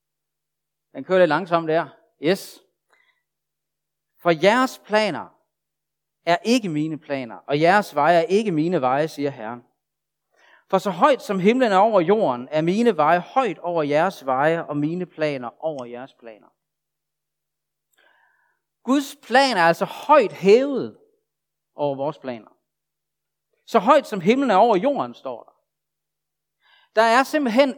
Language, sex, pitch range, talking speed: Danish, male, 155-260 Hz, 140 wpm